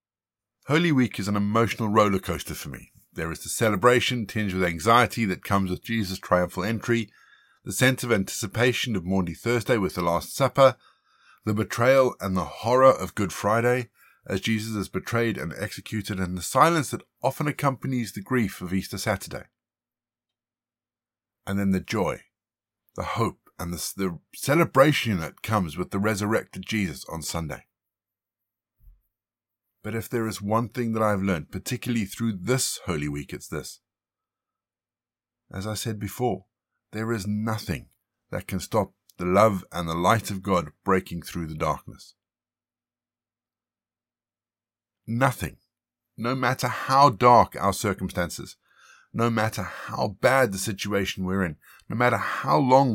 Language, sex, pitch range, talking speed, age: English, male, 95-120 Hz, 150 wpm, 50-69